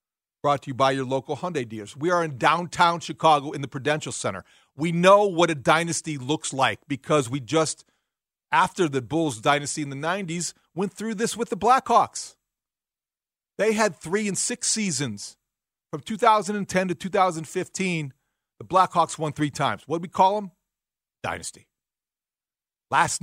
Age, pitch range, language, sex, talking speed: 40-59, 145-195 Hz, English, male, 160 wpm